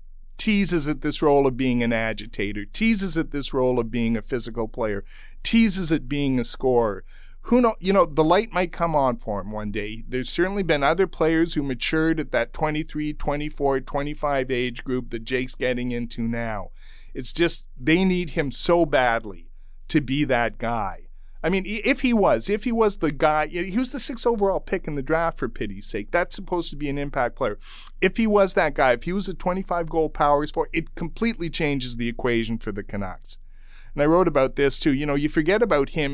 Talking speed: 210 wpm